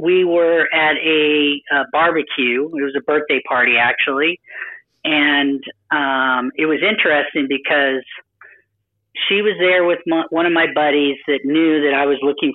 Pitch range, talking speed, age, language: 140-165 Hz, 155 wpm, 40-59, English